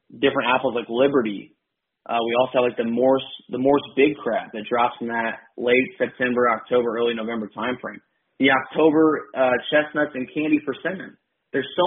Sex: male